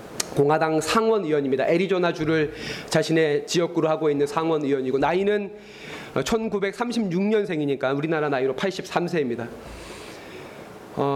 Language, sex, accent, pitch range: Korean, male, native, 170-235 Hz